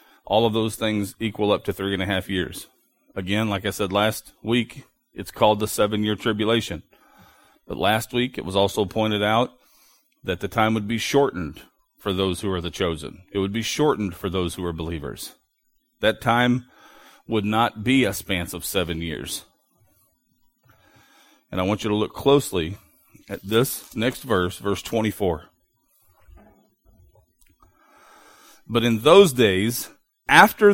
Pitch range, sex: 100-150 Hz, male